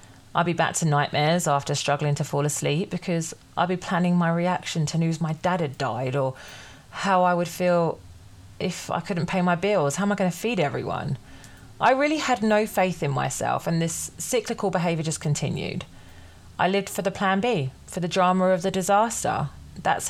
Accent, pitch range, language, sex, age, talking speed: British, 145-195 Hz, English, female, 30-49, 195 wpm